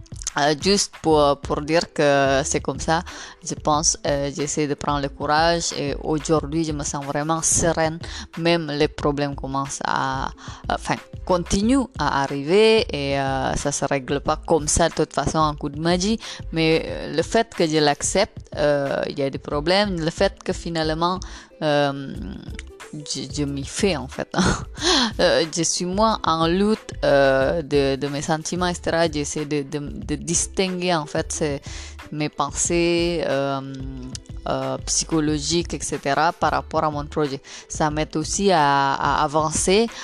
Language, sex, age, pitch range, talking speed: French, female, 20-39, 145-170 Hz, 155 wpm